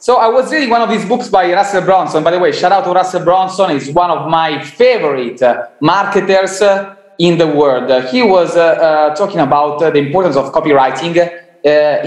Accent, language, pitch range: Italian, English, 140-195 Hz